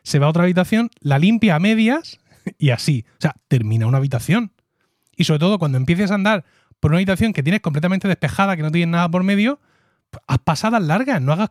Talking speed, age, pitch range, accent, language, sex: 220 wpm, 30-49, 135-195 Hz, Spanish, Spanish, male